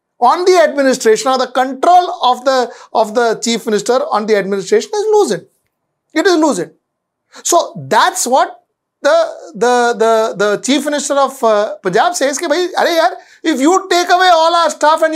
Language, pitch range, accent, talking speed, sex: English, 245-335 Hz, Indian, 165 wpm, male